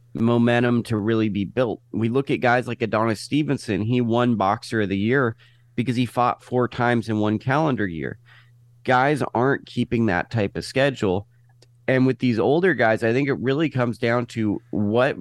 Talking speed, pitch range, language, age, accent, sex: 185 wpm, 110-130 Hz, English, 30-49, American, male